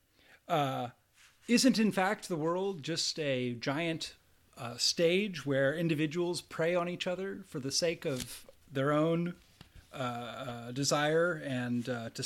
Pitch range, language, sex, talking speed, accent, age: 125-185 Hz, English, male, 140 wpm, American, 30-49